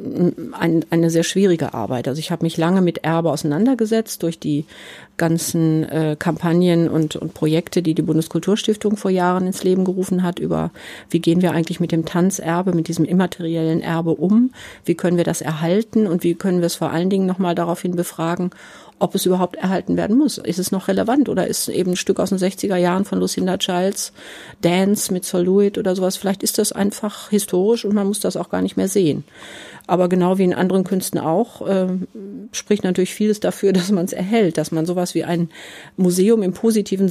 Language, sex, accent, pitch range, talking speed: German, female, German, 170-195 Hz, 195 wpm